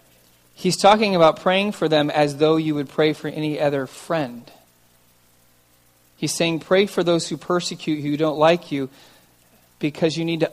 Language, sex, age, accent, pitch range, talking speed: English, male, 40-59, American, 140-190 Hz, 175 wpm